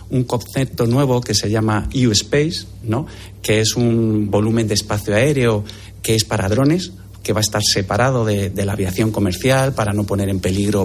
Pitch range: 100-115 Hz